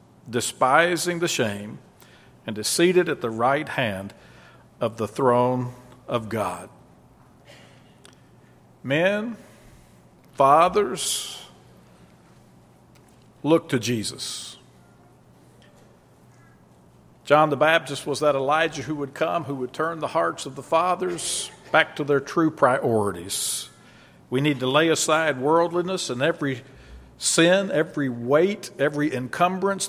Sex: male